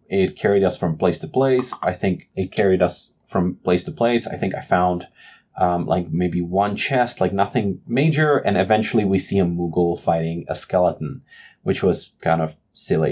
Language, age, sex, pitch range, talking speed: English, 20-39, male, 90-115 Hz, 190 wpm